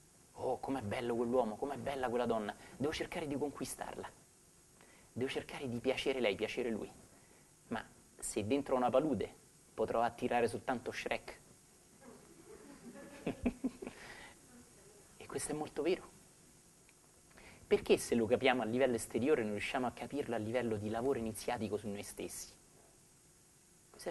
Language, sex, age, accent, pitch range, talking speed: Italian, male, 30-49, native, 110-140 Hz, 130 wpm